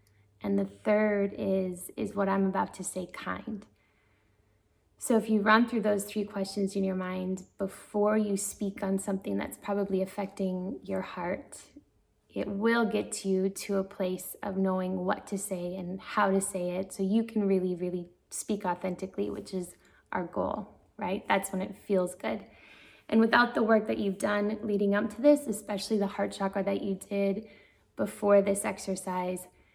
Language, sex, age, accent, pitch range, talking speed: English, female, 10-29, American, 185-215 Hz, 175 wpm